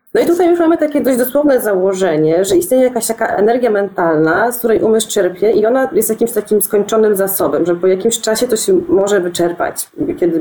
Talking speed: 200 wpm